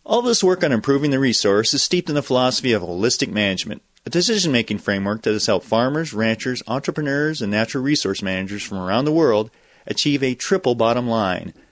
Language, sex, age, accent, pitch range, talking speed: English, male, 40-59, American, 110-150 Hz, 190 wpm